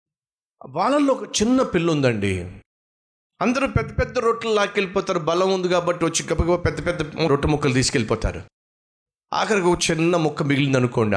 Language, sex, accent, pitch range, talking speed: Telugu, male, native, 110-180 Hz, 125 wpm